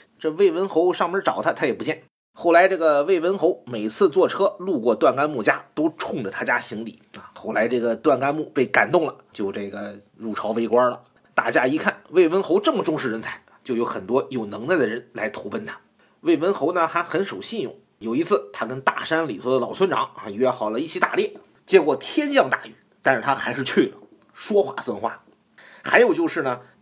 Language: Chinese